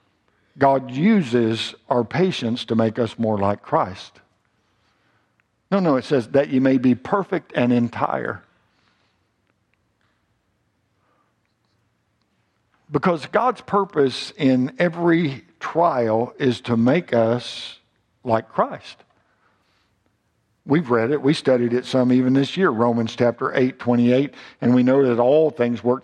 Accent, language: American, English